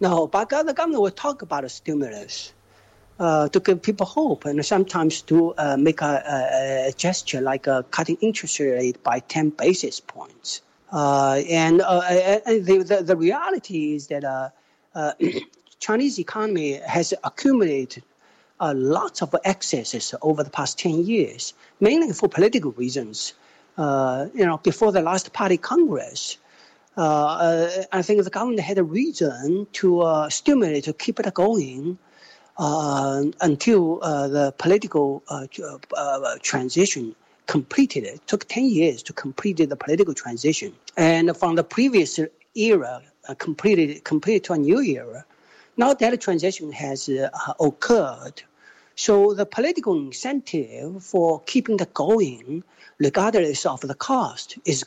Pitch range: 145-205 Hz